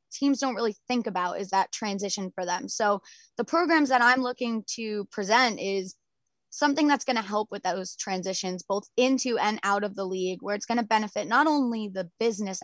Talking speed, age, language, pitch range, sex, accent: 205 wpm, 20-39, English, 195-235 Hz, female, American